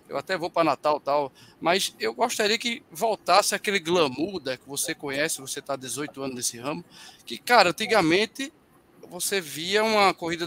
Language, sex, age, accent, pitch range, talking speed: Portuguese, male, 20-39, Brazilian, 150-190 Hz, 180 wpm